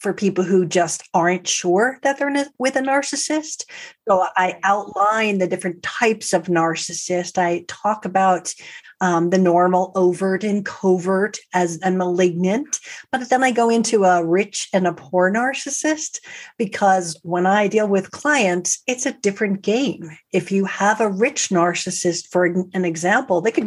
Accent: American